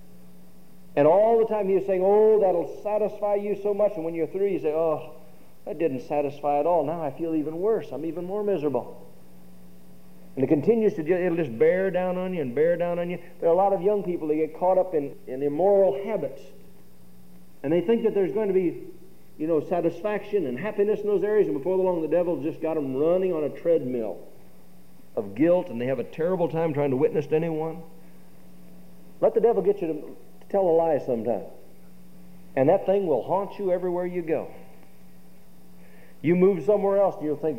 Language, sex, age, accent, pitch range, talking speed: English, male, 60-79, American, 135-190 Hz, 210 wpm